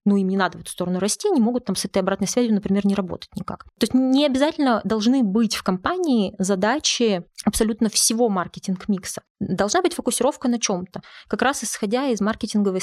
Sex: female